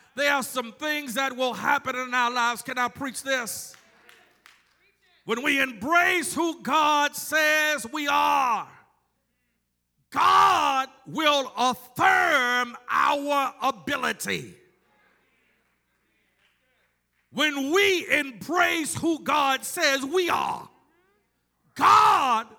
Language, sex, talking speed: English, male, 95 wpm